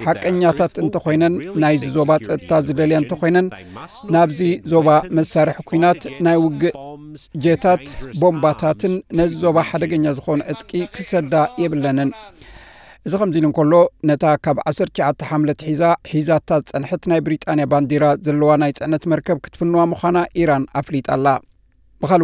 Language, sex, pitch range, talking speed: Amharic, male, 145-170 Hz, 100 wpm